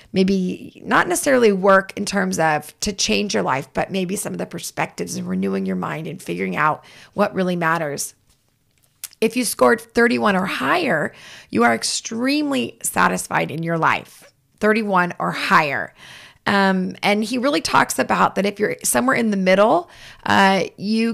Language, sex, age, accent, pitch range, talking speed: English, female, 30-49, American, 175-210 Hz, 165 wpm